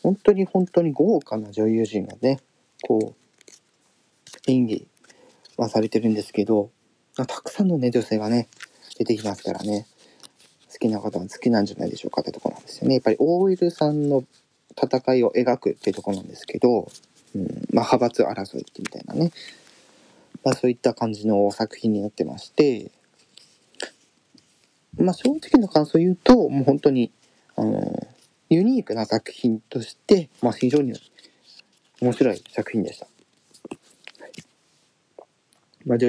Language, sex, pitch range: Japanese, male, 110-155 Hz